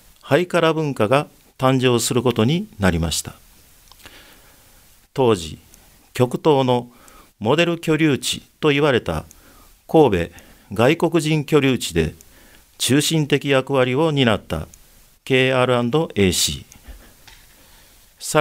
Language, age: Japanese, 50-69